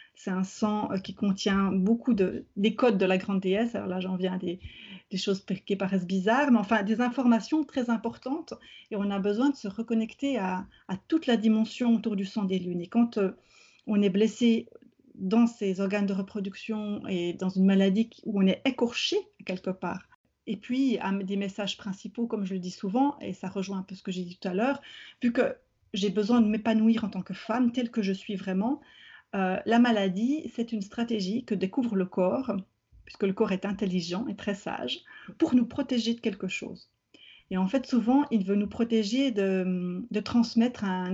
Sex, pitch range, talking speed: female, 195-235 Hz, 210 wpm